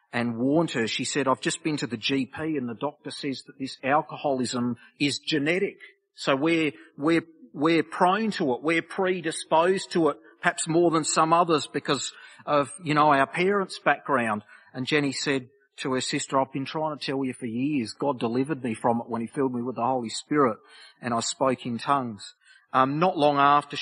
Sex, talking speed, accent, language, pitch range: male, 200 wpm, Australian, English, 115-145 Hz